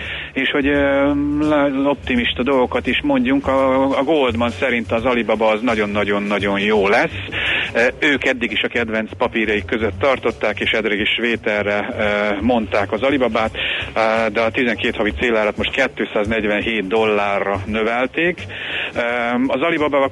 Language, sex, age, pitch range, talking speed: Hungarian, male, 30-49, 105-125 Hz, 120 wpm